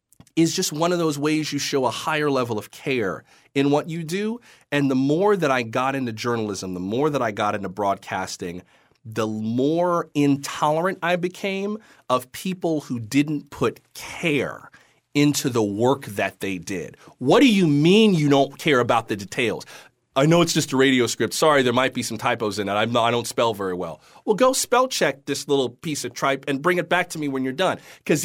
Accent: American